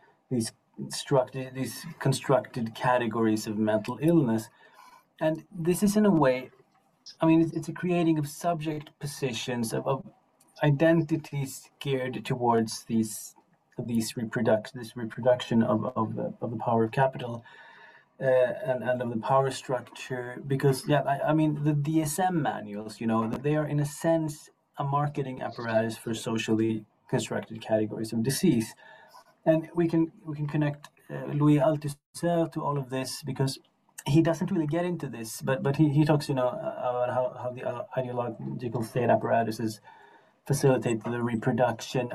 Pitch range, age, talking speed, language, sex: 115-150 Hz, 30-49, 160 wpm, English, male